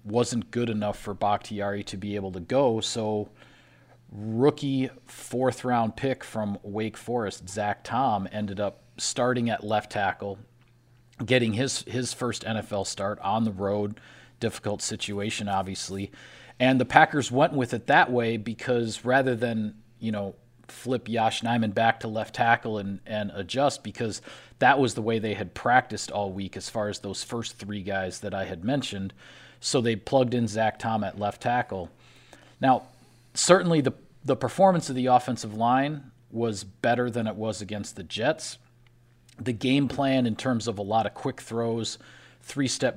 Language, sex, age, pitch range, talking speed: English, male, 40-59, 105-125 Hz, 170 wpm